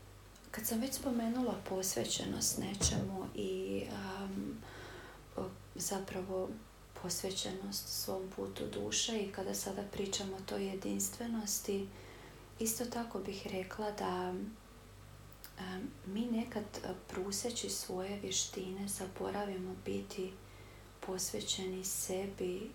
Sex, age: female, 30-49